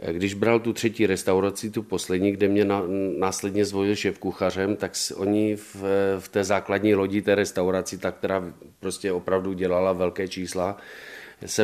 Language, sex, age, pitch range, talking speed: Czech, male, 40-59, 85-100 Hz, 150 wpm